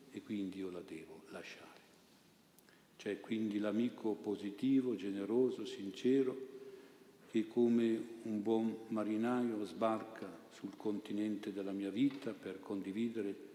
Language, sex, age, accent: Italian, male, 50-69, native